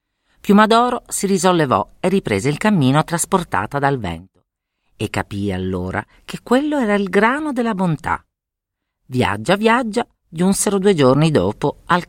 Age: 40-59